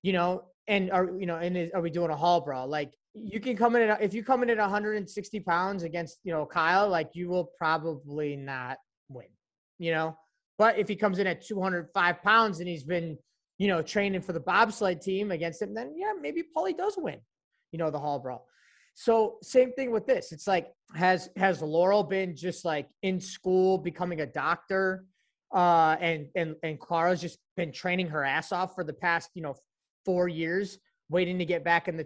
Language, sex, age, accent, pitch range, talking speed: English, male, 20-39, American, 170-210 Hz, 210 wpm